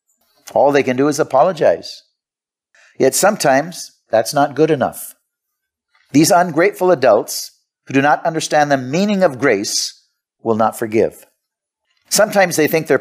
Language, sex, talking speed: English, male, 140 wpm